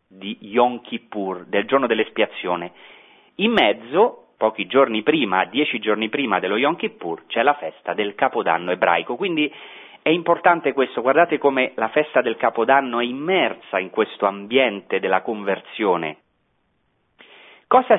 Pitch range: 105-145 Hz